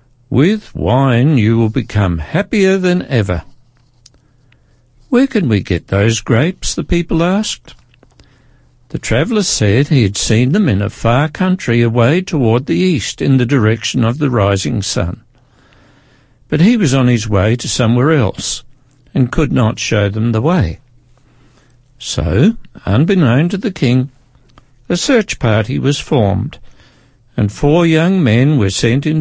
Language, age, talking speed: English, 60-79, 150 wpm